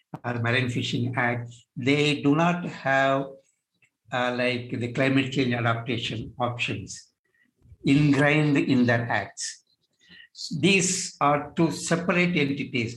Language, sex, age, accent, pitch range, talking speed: Telugu, male, 60-79, native, 125-160 Hz, 115 wpm